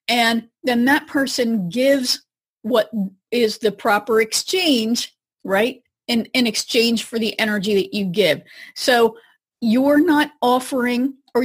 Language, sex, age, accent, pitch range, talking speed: English, female, 40-59, American, 225-295 Hz, 130 wpm